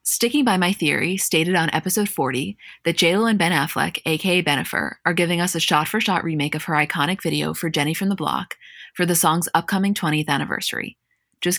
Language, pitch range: English, 155-195 Hz